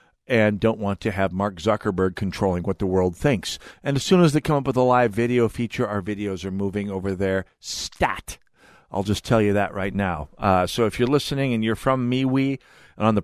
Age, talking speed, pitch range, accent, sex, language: 50-69, 225 wpm, 95-125 Hz, American, male, English